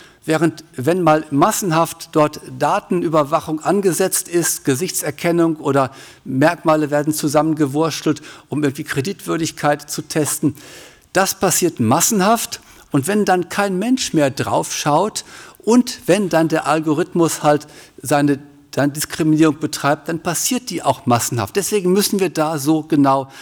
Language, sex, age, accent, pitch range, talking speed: German, male, 50-69, German, 150-190 Hz, 125 wpm